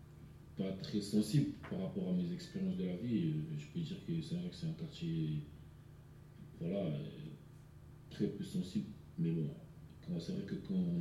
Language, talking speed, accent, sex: French, 165 wpm, French, male